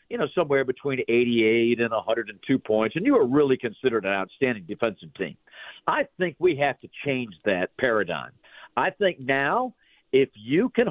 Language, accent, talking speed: English, American, 170 wpm